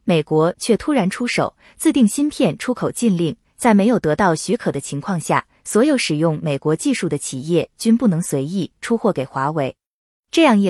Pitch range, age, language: 165-245 Hz, 20-39, Chinese